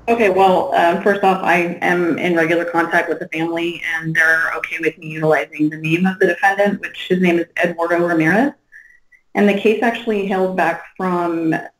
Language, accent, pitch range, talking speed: English, American, 160-185 Hz, 190 wpm